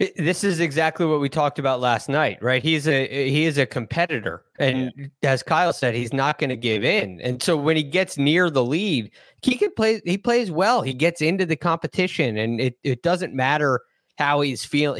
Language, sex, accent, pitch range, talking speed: English, male, American, 120-155 Hz, 210 wpm